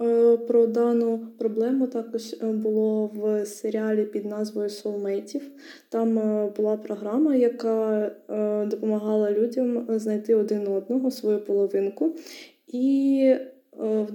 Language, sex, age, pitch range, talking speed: Ukrainian, female, 20-39, 210-240 Hz, 100 wpm